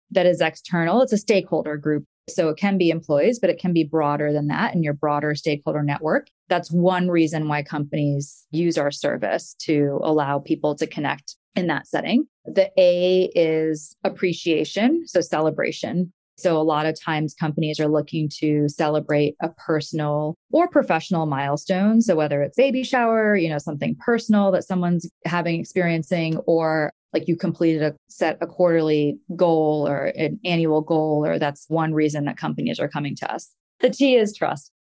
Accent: American